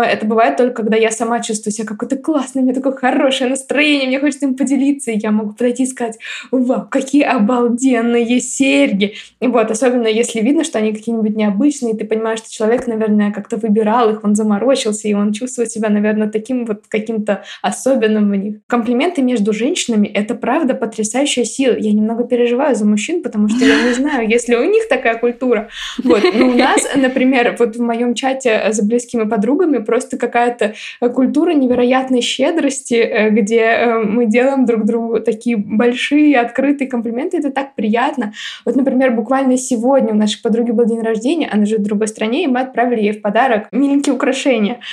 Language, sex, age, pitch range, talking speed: Russian, female, 20-39, 225-270 Hz, 180 wpm